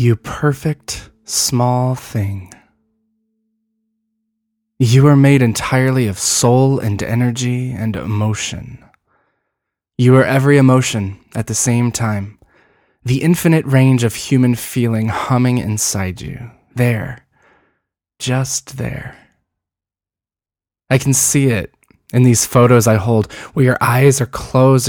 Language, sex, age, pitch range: English, male, 20-39, 110-135 Hz